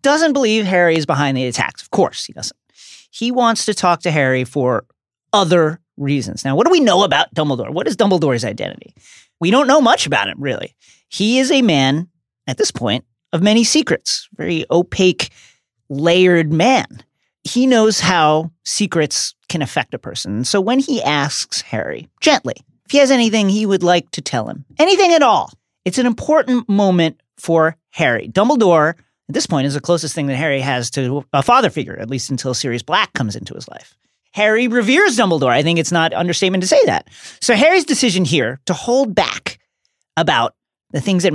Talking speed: 190 wpm